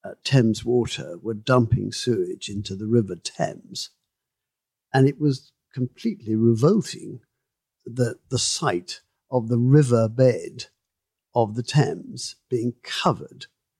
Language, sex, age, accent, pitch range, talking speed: English, male, 50-69, British, 115-145 Hz, 120 wpm